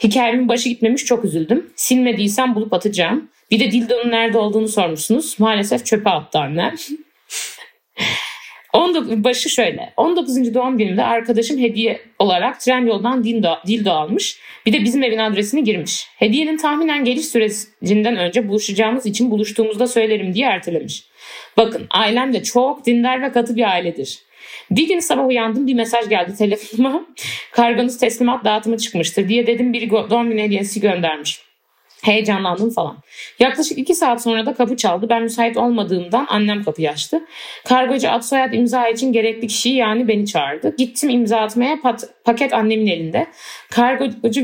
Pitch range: 220-255 Hz